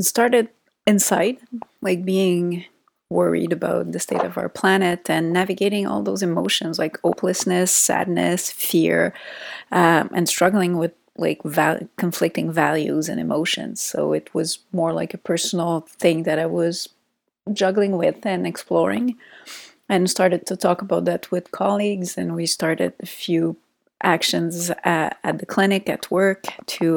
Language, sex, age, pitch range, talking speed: English, female, 30-49, 170-195 Hz, 145 wpm